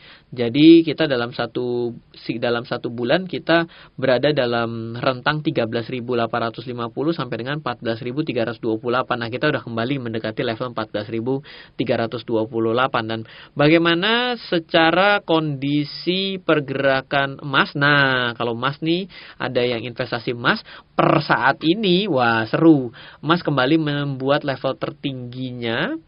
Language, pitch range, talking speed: Indonesian, 120-155 Hz, 105 wpm